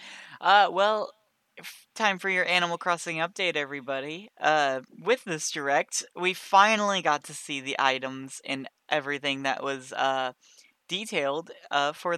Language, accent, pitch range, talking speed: English, American, 150-195 Hz, 140 wpm